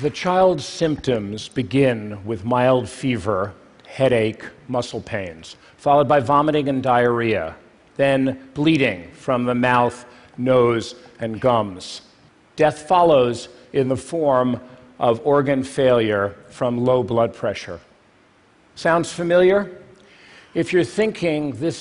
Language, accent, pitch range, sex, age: Chinese, American, 120-155 Hz, male, 50-69